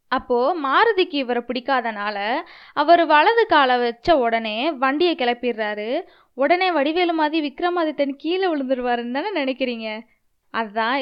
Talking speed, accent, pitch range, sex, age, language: 105 wpm, native, 240-330 Hz, female, 20-39, Tamil